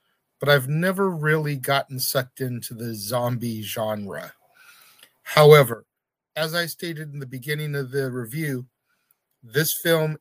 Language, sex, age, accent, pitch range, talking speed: English, male, 50-69, American, 125-150 Hz, 130 wpm